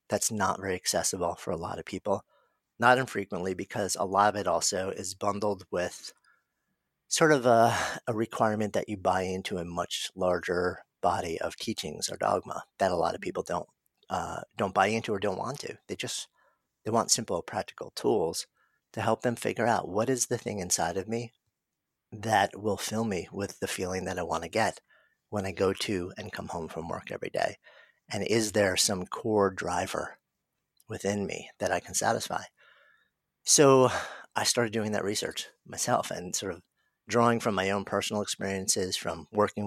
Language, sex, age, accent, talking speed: English, male, 50-69, American, 185 wpm